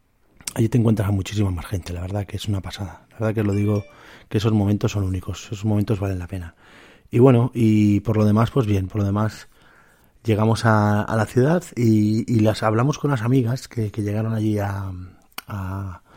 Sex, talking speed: male, 215 wpm